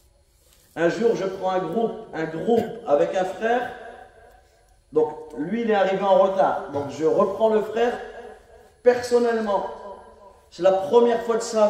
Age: 40-59